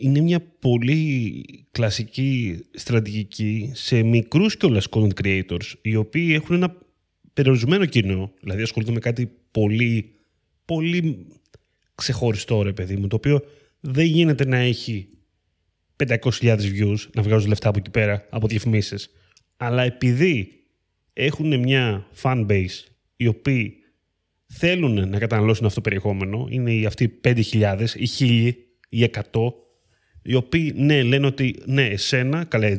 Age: 20-39